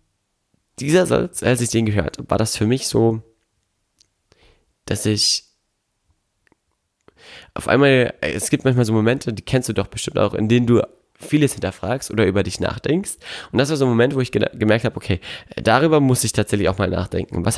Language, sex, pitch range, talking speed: German, male, 100-120 Hz, 185 wpm